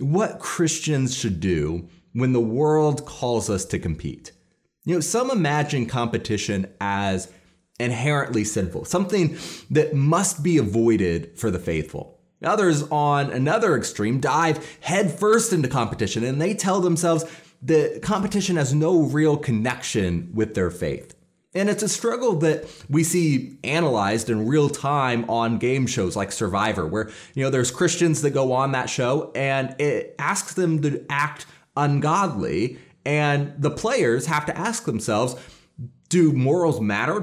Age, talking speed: 30-49, 145 wpm